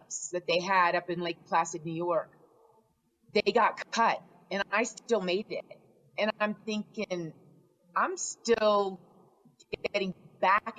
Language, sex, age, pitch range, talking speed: English, female, 30-49, 175-200 Hz, 135 wpm